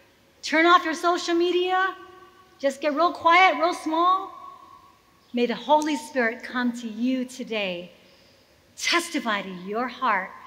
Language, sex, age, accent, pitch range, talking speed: English, female, 40-59, American, 230-335 Hz, 130 wpm